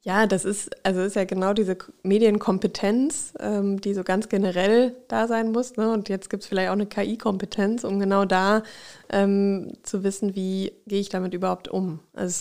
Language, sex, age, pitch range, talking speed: German, female, 20-39, 185-210 Hz, 190 wpm